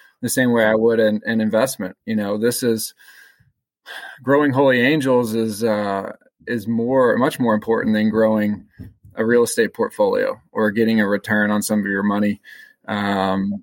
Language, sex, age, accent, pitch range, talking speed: English, male, 20-39, American, 105-115 Hz, 165 wpm